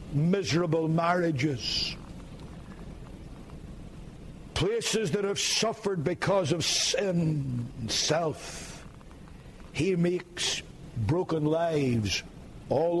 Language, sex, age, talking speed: English, male, 60-79, 75 wpm